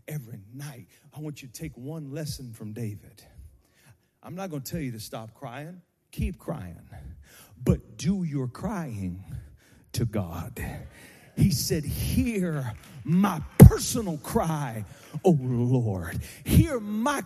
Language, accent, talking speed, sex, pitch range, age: English, American, 130 wpm, male, 140-230 Hz, 40-59